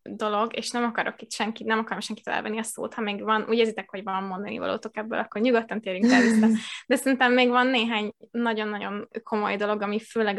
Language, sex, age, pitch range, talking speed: Hungarian, female, 10-29, 215-230 Hz, 210 wpm